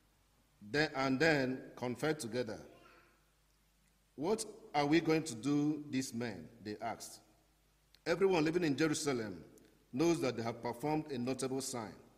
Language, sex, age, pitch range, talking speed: English, male, 50-69, 115-155 Hz, 130 wpm